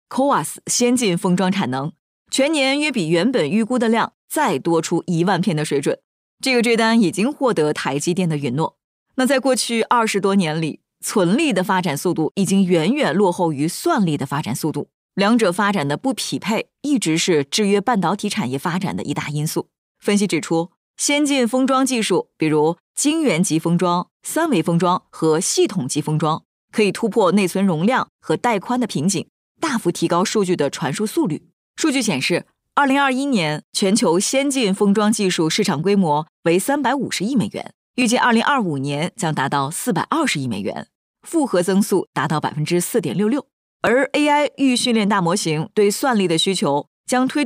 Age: 20-39